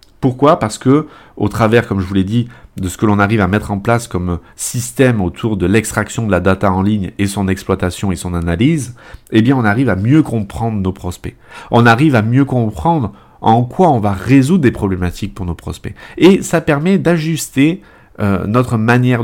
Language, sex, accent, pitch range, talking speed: French, male, French, 100-135 Hz, 205 wpm